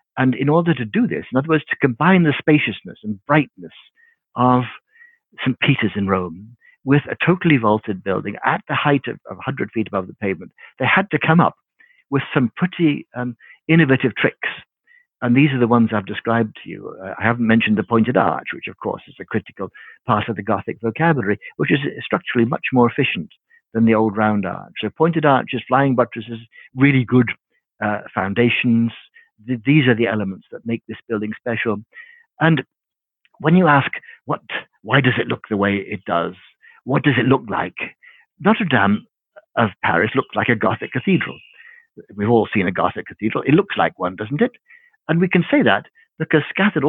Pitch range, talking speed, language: 110-165 Hz, 190 wpm, English